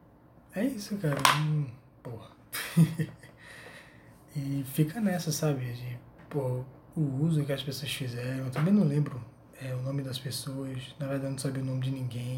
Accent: Brazilian